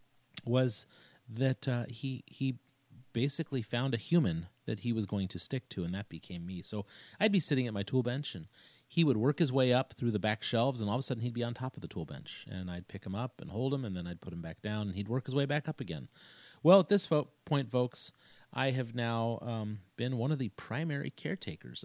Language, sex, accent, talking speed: English, male, American, 250 wpm